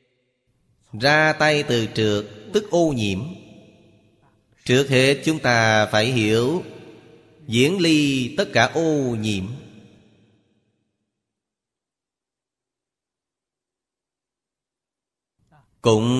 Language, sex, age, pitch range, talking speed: Vietnamese, male, 30-49, 105-130 Hz, 75 wpm